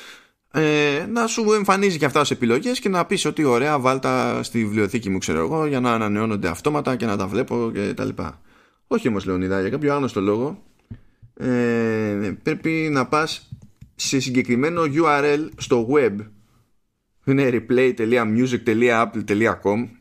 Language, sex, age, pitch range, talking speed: Greek, male, 20-39, 110-145 Hz, 140 wpm